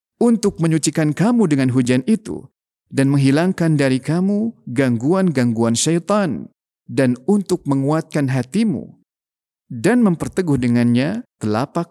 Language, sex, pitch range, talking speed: Indonesian, male, 125-180 Hz, 100 wpm